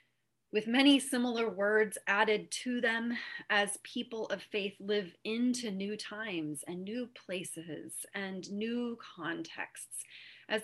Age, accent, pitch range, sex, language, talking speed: 30-49, American, 185-245 Hz, female, English, 125 wpm